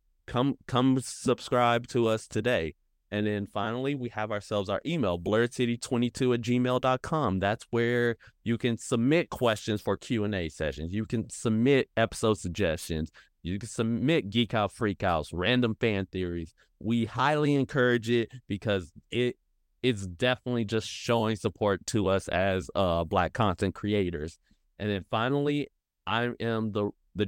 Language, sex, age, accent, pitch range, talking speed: English, male, 30-49, American, 95-120 Hz, 150 wpm